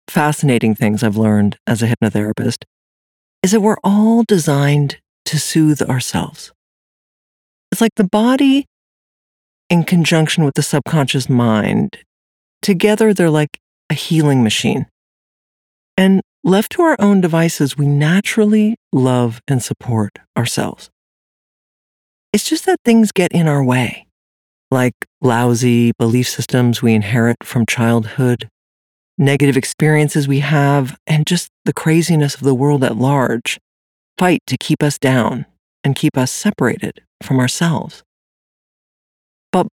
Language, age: English, 50-69